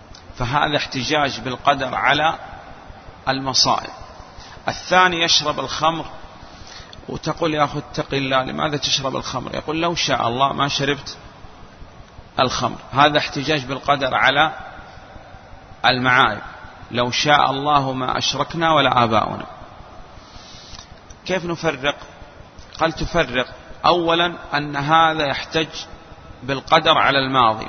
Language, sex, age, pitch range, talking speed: Arabic, male, 40-59, 125-160 Hz, 100 wpm